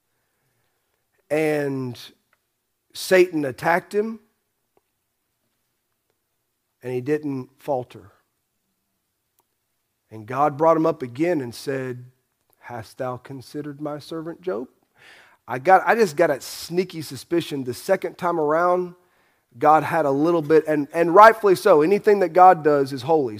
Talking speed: 125 wpm